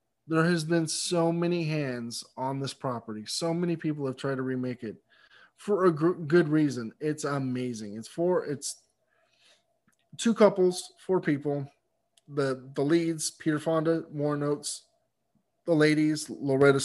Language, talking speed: English, 145 wpm